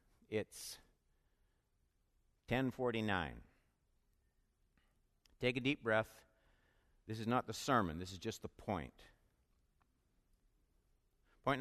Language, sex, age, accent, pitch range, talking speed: English, male, 60-79, American, 115-180 Hz, 90 wpm